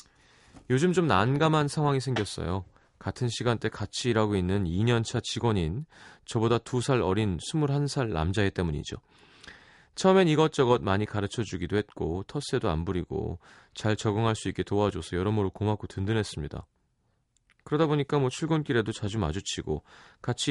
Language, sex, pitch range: Korean, male, 95-135 Hz